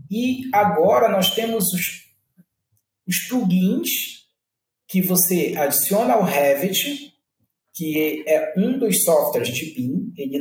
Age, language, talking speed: 40-59, Portuguese, 115 wpm